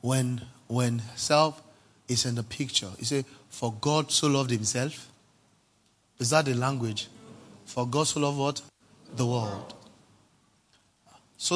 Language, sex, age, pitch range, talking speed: English, male, 30-49, 115-140 Hz, 135 wpm